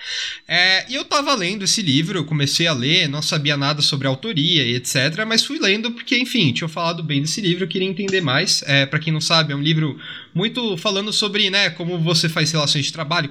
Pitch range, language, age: 145-225 Hz, Portuguese, 20-39